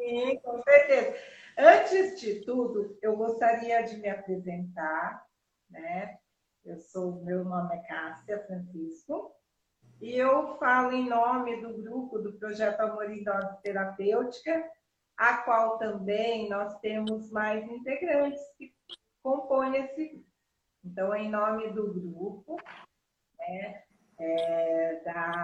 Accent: Brazilian